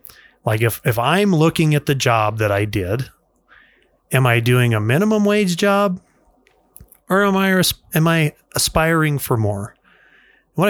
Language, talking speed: English, 150 wpm